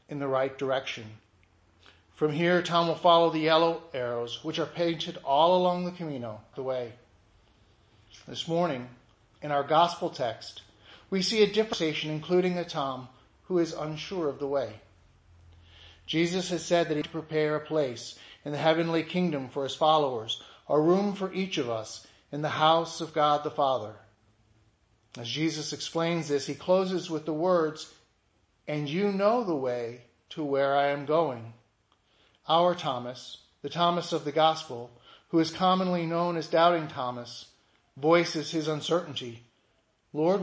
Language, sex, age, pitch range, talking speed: English, male, 40-59, 120-170 Hz, 155 wpm